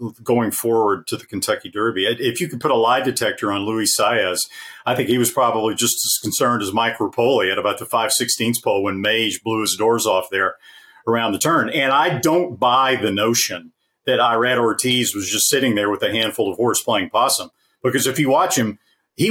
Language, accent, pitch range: English, American, 110-145 Hz